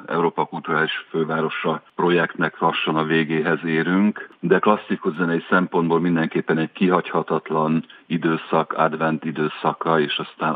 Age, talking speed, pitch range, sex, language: 50-69, 115 wpm, 80-85 Hz, male, Hungarian